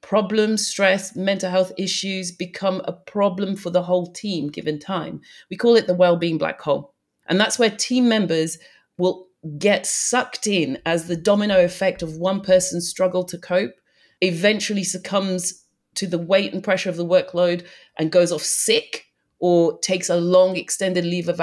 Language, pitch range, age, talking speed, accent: English, 170-205 Hz, 30-49, 175 wpm, British